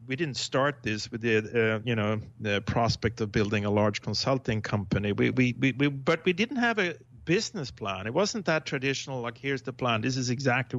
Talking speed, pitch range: 215 wpm, 115-130 Hz